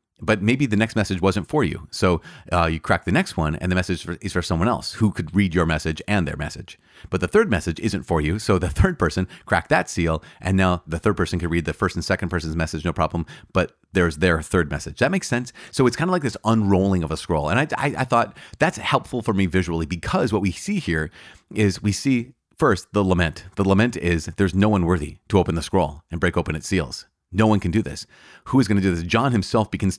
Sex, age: male, 30-49